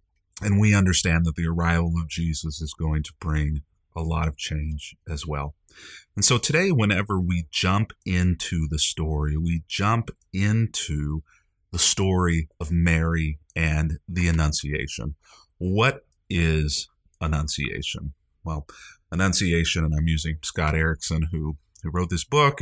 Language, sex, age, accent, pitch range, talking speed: English, male, 30-49, American, 80-95 Hz, 140 wpm